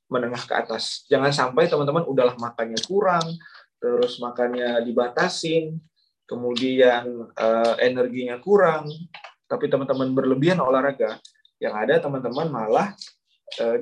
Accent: native